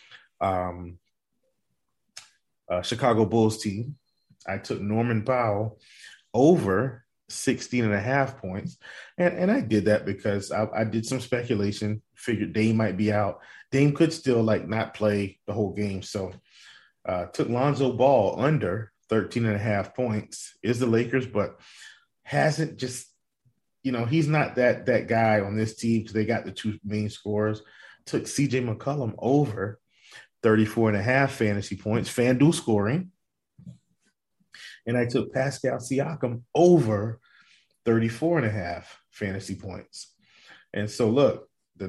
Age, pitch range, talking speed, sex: 30-49, 105-130 Hz, 145 wpm, male